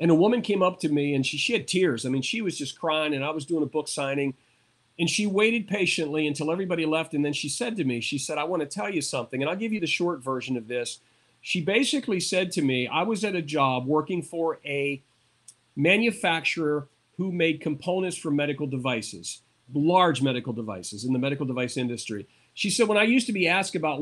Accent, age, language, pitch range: American, 40-59, English, 140-180 Hz